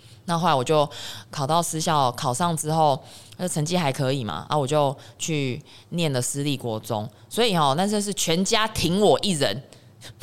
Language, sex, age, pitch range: Chinese, female, 20-39, 125-175 Hz